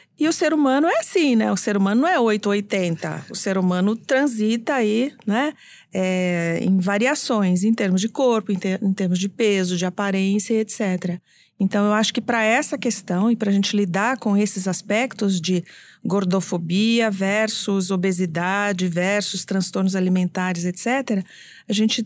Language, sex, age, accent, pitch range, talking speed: English, female, 40-59, Brazilian, 190-245 Hz, 165 wpm